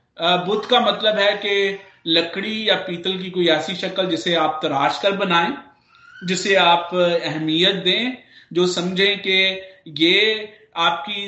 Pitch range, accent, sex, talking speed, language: 175-245 Hz, native, male, 140 wpm, Hindi